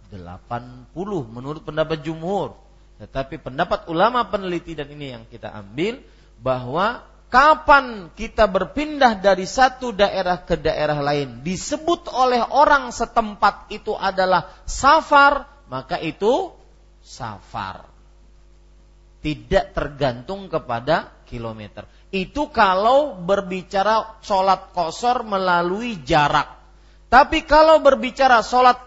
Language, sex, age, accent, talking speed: Indonesian, male, 40-59, native, 100 wpm